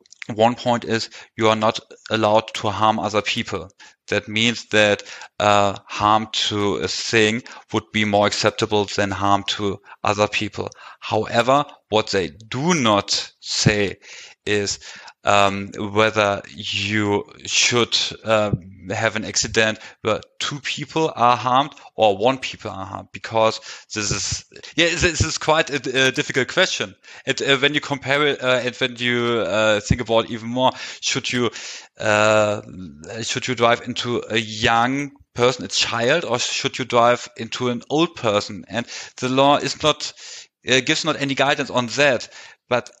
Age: 30-49